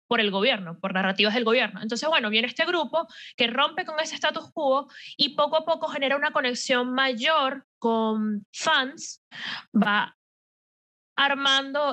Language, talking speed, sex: Spanish, 150 wpm, female